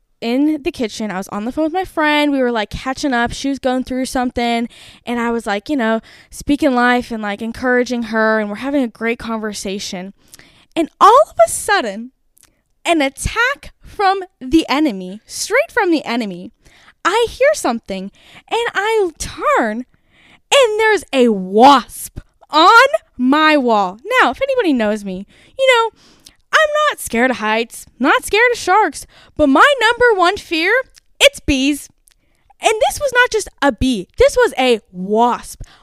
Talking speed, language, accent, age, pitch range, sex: 165 wpm, English, American, 10-29, 220-310 Hz, female